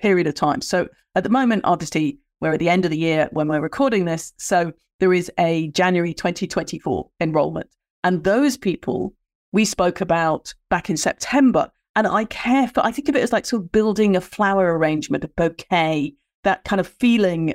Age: 40-59